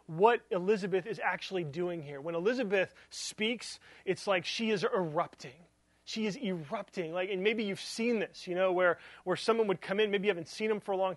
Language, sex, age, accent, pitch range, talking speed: English, male, 30-49, American, 175-245 Hz, 210 wpm